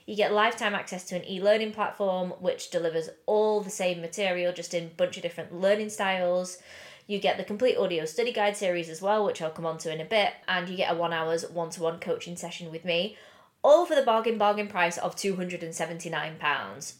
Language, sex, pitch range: English, female, 165-205 Hz